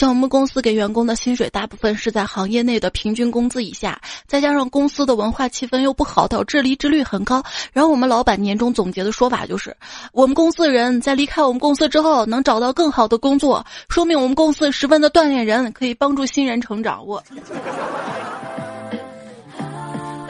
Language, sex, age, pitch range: Chinese, female, 20-39, 225-285 Hz